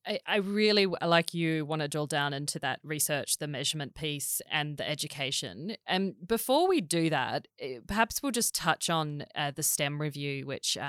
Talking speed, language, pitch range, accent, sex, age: 175 wpm, English, 150-190 Hz, Australian, female, 20-39